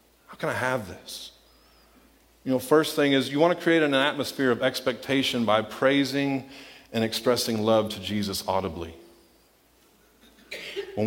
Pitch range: 125-155 Hz